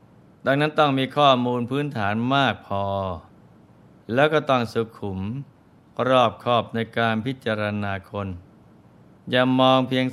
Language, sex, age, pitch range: Thai, male, 20-39, 100-125 Hz